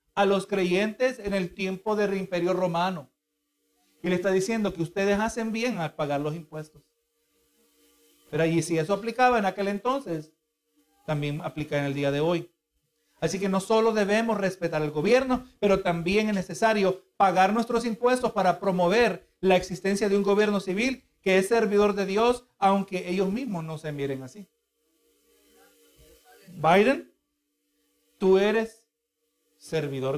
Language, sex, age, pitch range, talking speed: Spanish, male, 50-69, 155-200 Hz, 150 wpm